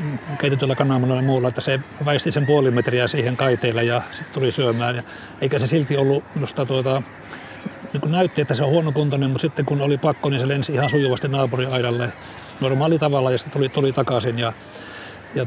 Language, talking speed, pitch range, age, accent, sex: Finnish, 180 wpm, 125-150 Hz, 60-79, native, male